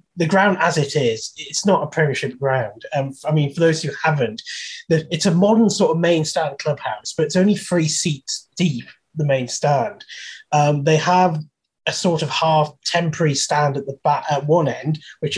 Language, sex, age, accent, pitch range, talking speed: English, male, 30-49, British, 140-170 Hz, 195 wpm